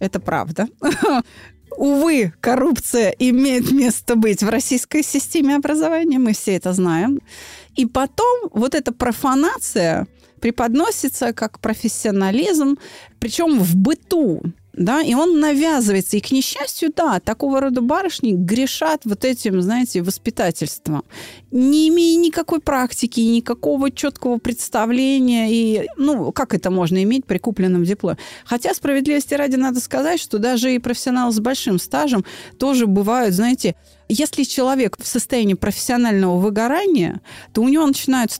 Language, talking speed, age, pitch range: Russian, 130 wpm, 30-49, 205-285 Hz